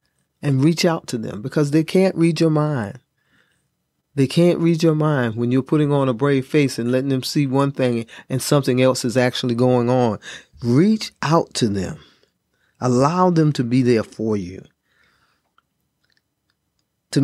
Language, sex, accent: English, male, American